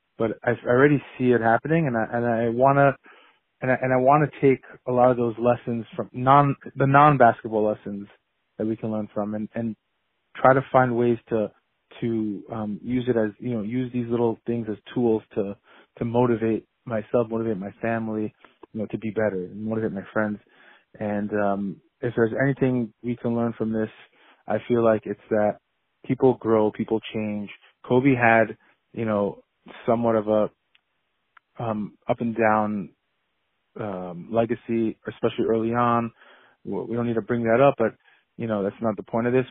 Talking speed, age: 185 wpm, 20-39